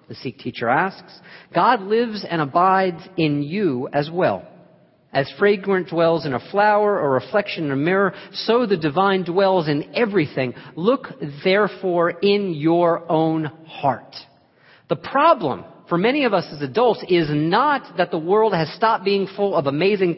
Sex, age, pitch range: male, 40-59, 145-195 Hz